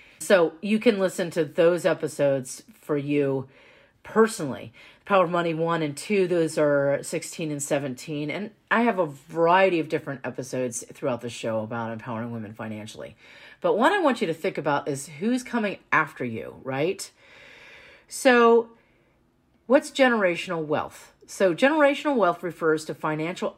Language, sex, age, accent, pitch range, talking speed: English, female, 40-59, American, 140-200 Hz, 155 wpm